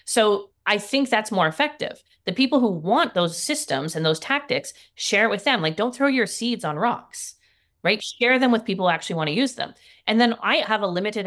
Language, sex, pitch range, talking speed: English, female, 170-235 Hz, 230 wpm